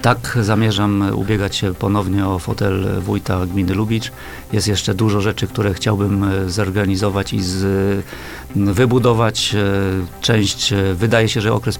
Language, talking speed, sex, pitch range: Polish, 120 wpm, male, 95-110 Hz